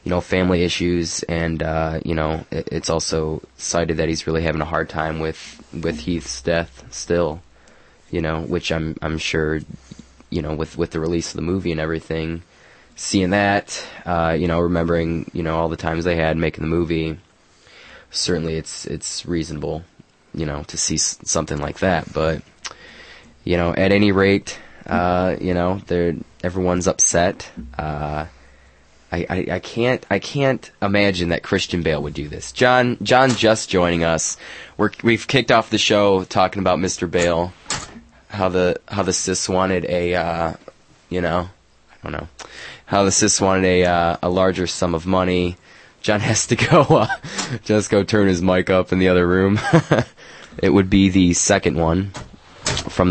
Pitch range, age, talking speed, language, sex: 80-95 Hz, 20-39, 175 wpm, English, male